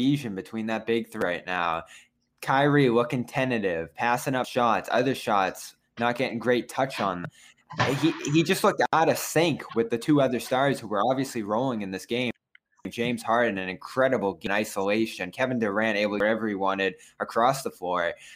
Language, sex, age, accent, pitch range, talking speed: English, male, 20-39, American, 115-135 Hz, 180 wpm